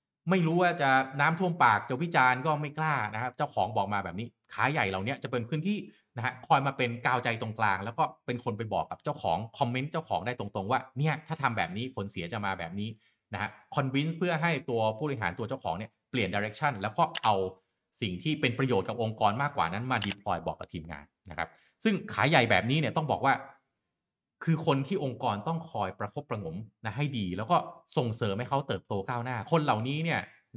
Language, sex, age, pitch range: Thai, male, 30-49, 105-145 Hz